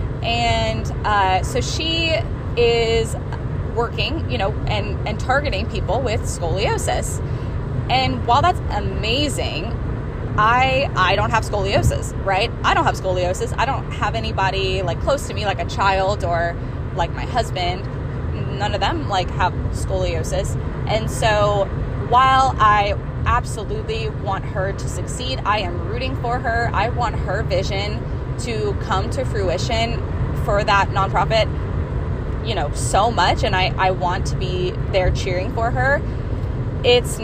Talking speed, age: 145 wpm, 20-39